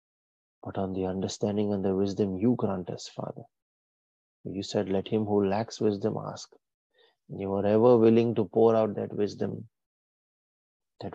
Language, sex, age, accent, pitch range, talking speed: English, male, 30-49, Indian, 95-110 Hz, 155 wpm